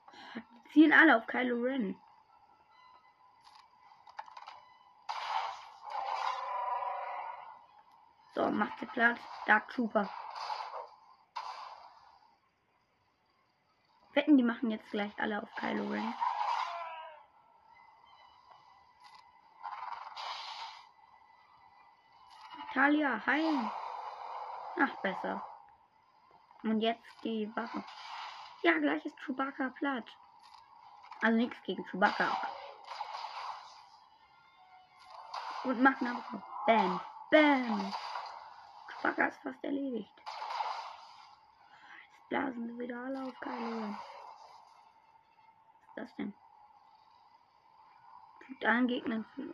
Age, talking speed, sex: 20-39, 70 wpm, female